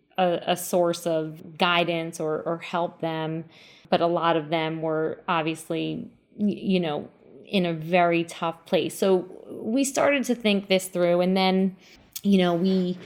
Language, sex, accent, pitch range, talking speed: English, female, American, 175-200 Hz, 155 wpm